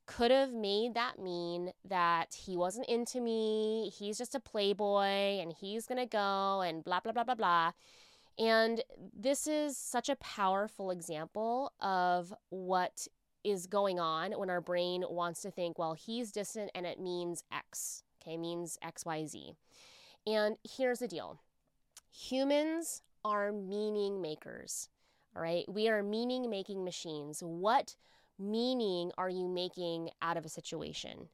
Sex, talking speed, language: female, 150 wpm, English